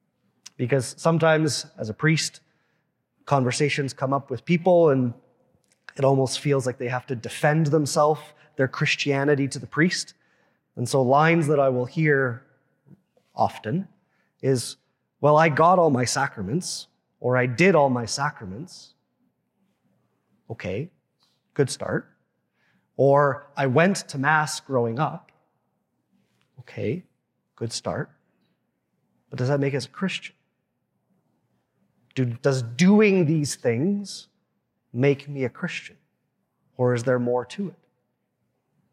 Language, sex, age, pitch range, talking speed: English, male, 30-49, 125-155 Hz, 125 wpm